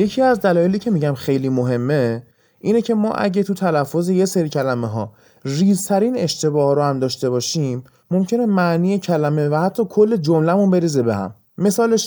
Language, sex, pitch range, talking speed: Persian, male, 130-195 Hz, 170 wpm